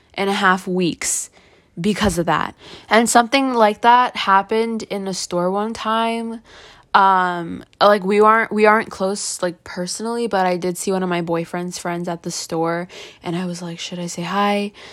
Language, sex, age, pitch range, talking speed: English, female, 20-39, 185-220 Hz, 185 wpm